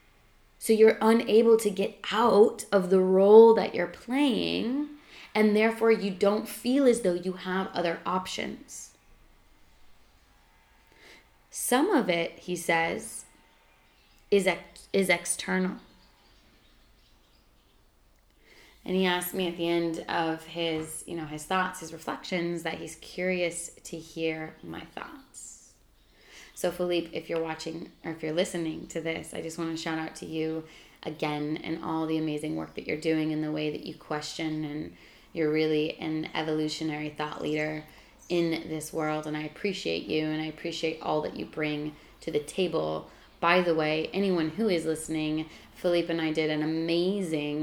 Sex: female